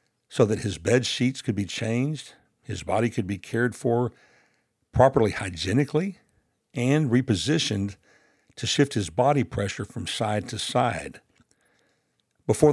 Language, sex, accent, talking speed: English, male, American, 130 wpm